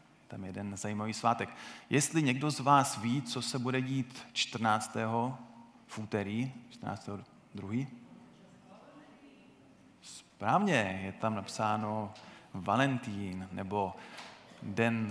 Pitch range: 105-120 Hz